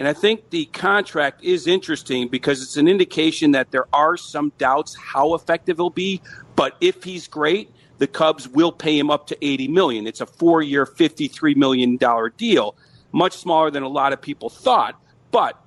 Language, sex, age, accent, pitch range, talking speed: English, male, 40-59, American, 135-180 Hz, 190 wpm